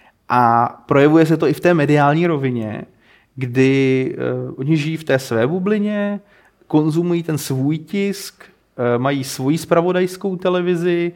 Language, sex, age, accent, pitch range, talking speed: Czech, male, 30-49, native, 125-160 Hz, 140 wpm